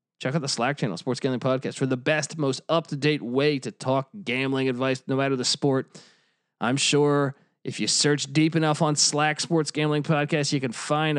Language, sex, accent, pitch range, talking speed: English, male, American, 140-185 Hz, 200 wpm